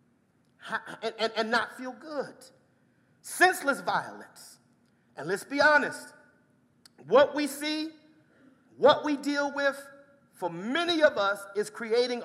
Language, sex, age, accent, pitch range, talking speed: English, male, 40-59, American, 200-290 Hz, 120 wpm